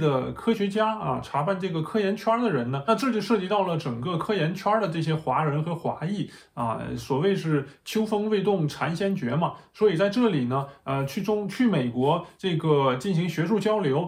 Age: 20-39